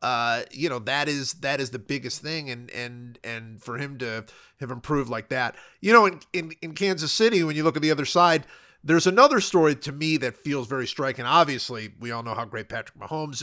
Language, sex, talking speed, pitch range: English, male, 230 wpm, 130-180 Hz